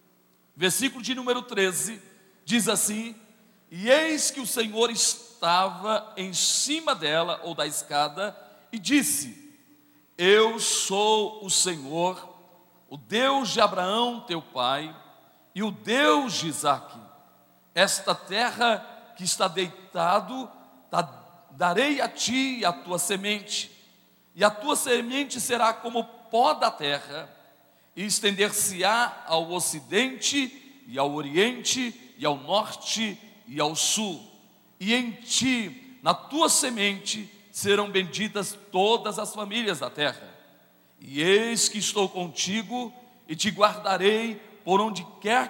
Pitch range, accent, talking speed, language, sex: 165-230 Hz, Brazilian, 120 wpm, Portuguese, male